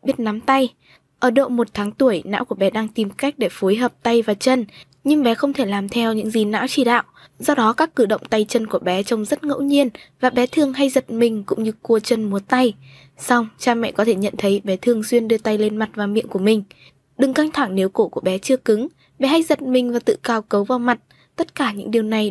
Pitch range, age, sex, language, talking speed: 210-255 Hz, 10-29, female, Vietnamese, 265 wpm